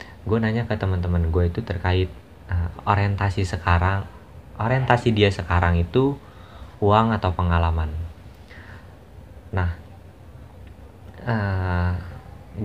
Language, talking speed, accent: Indonesian, 95 wpm, native